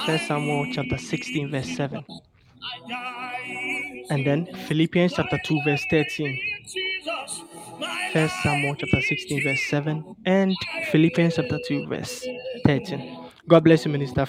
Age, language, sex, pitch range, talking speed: 20-39, English, male, 155-200 Hz, 120 wpm